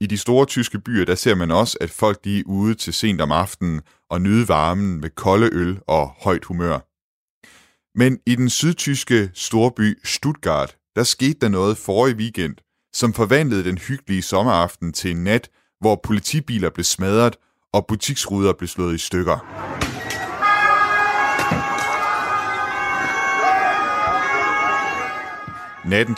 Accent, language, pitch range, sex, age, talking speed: native, Danish, 95-120 Hz, male, 30-49, 135 wpm